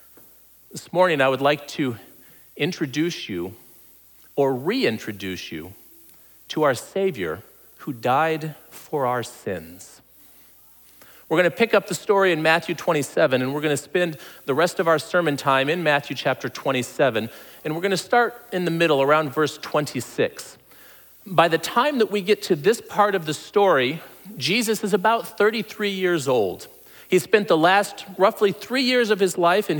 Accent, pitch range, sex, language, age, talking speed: American, 140-195 Hz, male, English, 40-59, 170 wpm